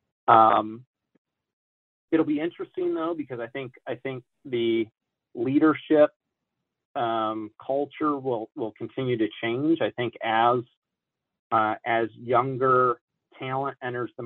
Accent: American